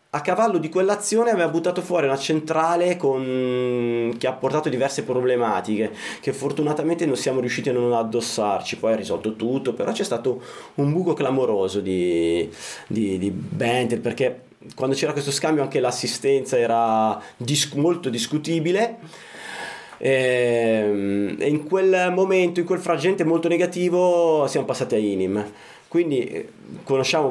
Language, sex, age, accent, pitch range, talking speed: Italian, male, 20-39, native, 115-165 Hz, 130 wpm